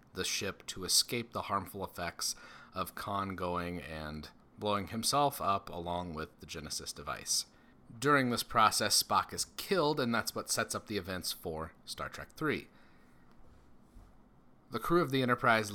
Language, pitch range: English, 95-130 Hz